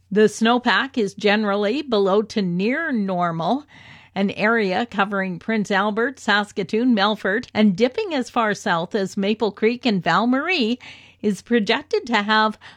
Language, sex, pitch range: English, female, 200-250 Hz